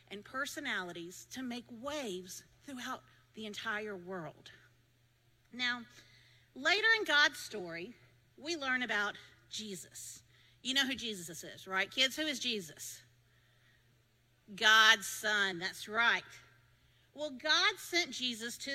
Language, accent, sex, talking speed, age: English, American, female, 120 wpm, 50-69